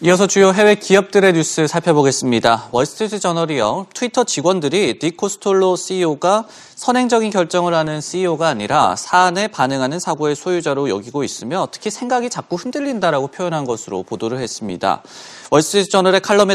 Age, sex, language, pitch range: 30-49, male, Korean, 150-215 Hz